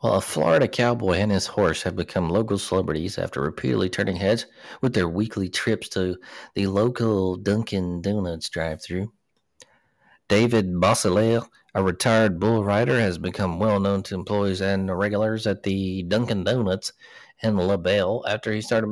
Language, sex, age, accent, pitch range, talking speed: English, male, 40-59, American, 95-115 Hz, 150 wpm